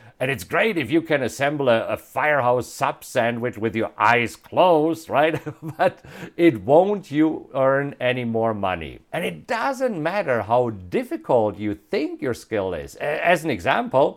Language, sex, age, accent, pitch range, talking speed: English, male, 50-69, German, 120-185 Hz, 160 wpm